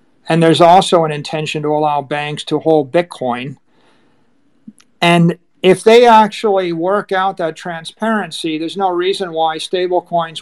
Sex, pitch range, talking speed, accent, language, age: male, 155-185 Hz, 145 wpm, American, English, 50-69